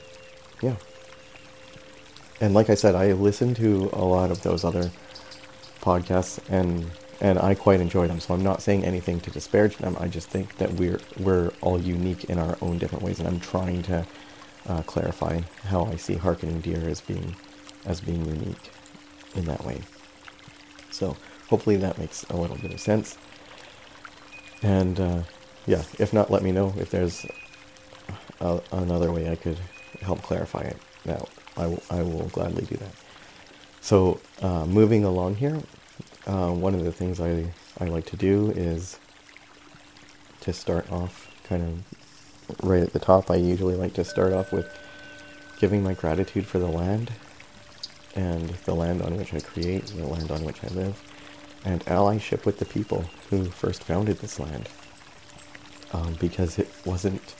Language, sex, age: English, male, 40-59